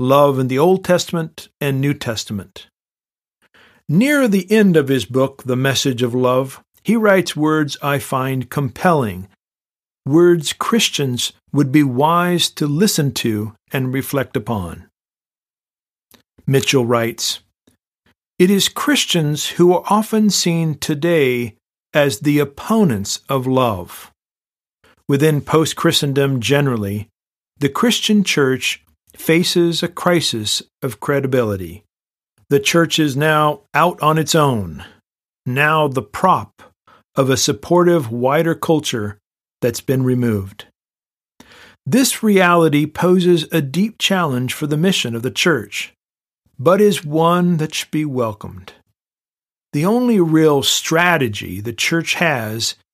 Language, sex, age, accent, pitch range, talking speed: English, male, 50-69, American, 125-170 Hz, 120 wpm